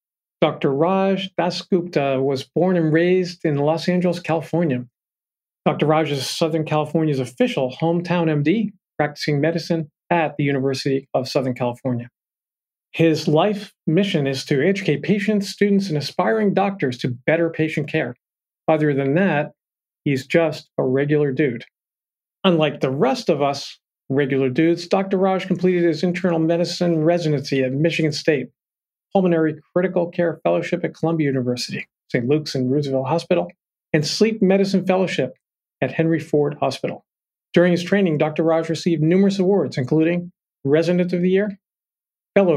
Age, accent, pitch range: 40-59, American, 150-180 Hz